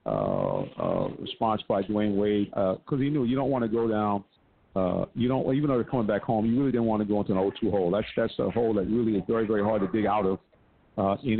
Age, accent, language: 50-69, American, English